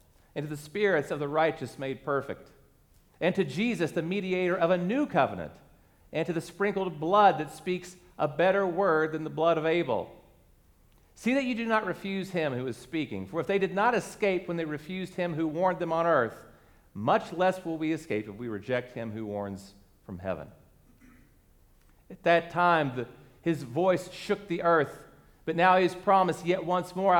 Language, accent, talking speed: English, American, 195 wpm